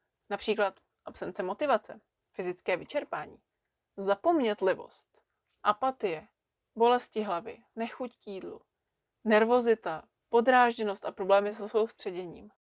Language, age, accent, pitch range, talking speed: Czech, 20-39, native, 195-235 Hz, 80 wpm